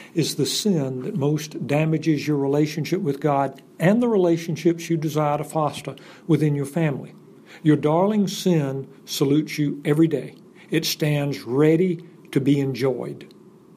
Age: 60-79